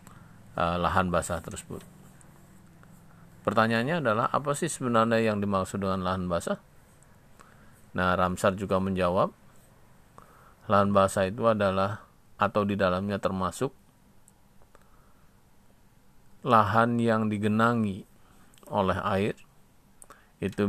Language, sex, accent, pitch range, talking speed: Indonesian, male, native, 95-110 Hz, 90 wpm